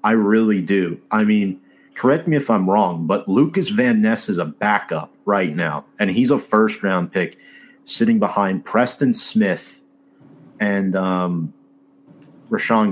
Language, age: English, 30-49